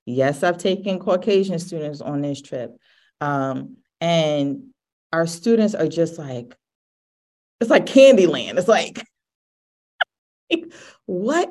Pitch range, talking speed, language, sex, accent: 155-210 Hz, 110 wpm, English, female, American